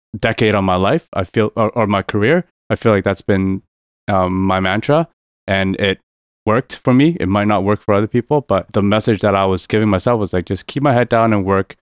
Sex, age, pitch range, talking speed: male, 20-39, 95-115 Hz, 235 wpm